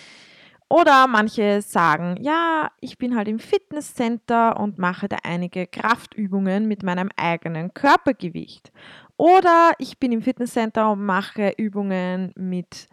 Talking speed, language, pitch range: 125 wpm, German, 185-240 Hz